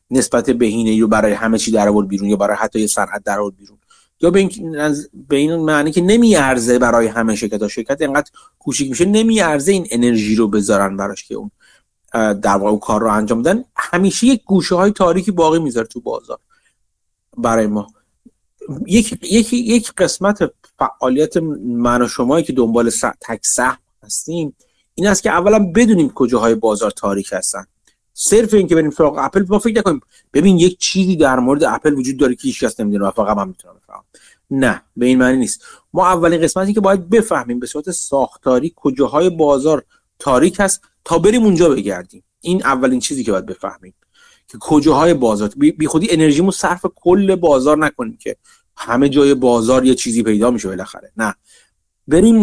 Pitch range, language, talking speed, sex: 120-195 Hz, Persian, 175 wpm, male